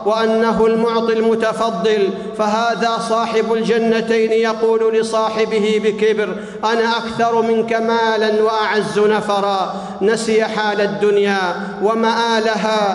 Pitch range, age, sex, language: 205-230 Hz, 50-69, male, Arabic